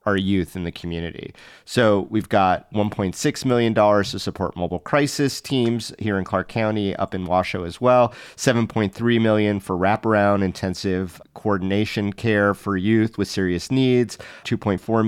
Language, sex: English, male